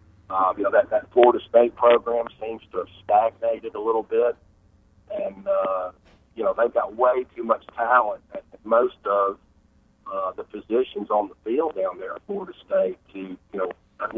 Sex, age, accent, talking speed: male, 40-59, American, 180 wpm